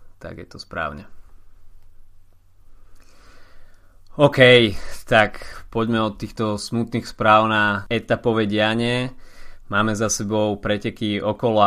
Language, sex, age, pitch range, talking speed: Slovak, male, 20-39, 100-115 Hz, 100 wpm